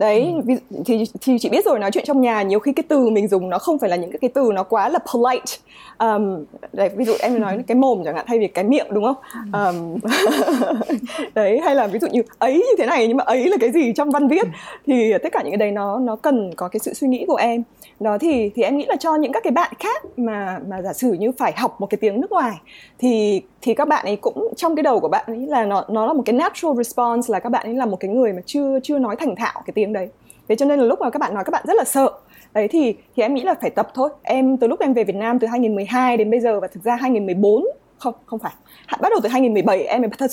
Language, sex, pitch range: Vietnamese, female, 210-275 Hz